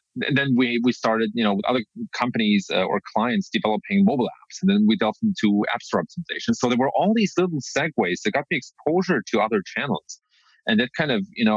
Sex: male